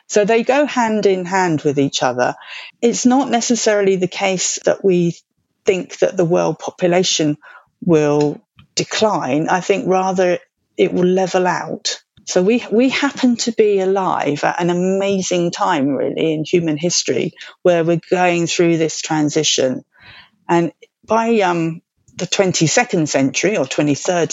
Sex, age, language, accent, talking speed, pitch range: female, 40-59, English, British, 145 wpm, 165-205 Hz